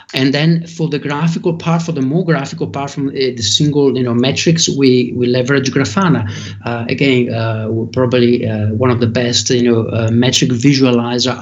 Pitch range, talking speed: 115-140 Hz, 190 wpm